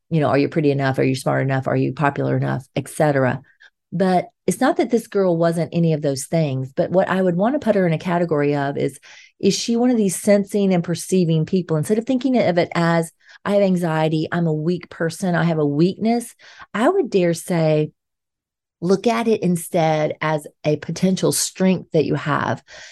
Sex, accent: female, American